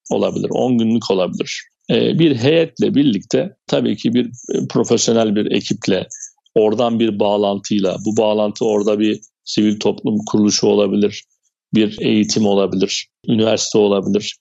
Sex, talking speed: male, 120 wpm